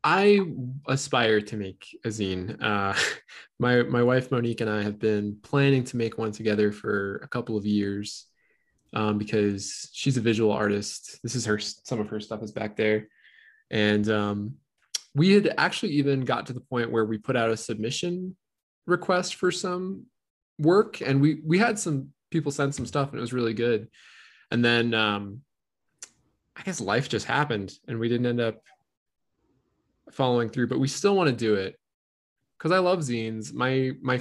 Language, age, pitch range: English, 10-29, 110-135 Hz